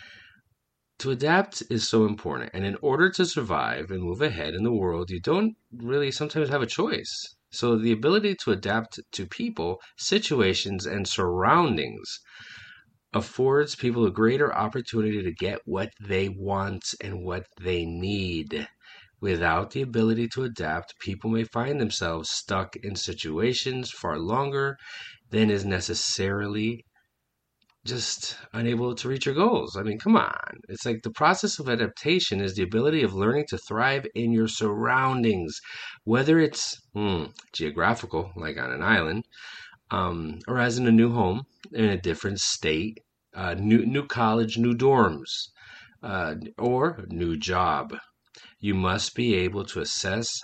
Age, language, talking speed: 30-49, English, 150 wpm